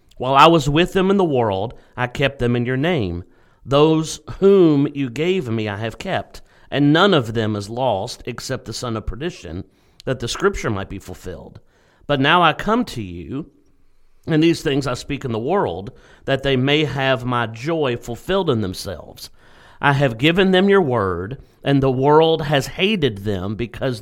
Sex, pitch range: male, 105-150 Hz